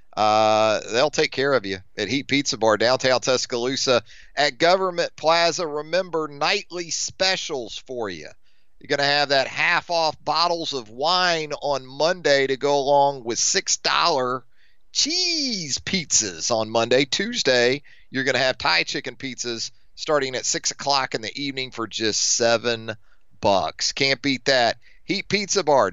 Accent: American